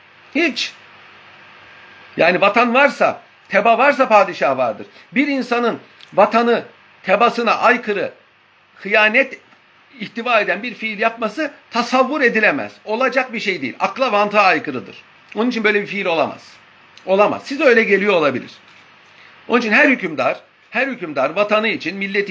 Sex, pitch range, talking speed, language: male, 195-260 Hz, 130 wpm, Turkish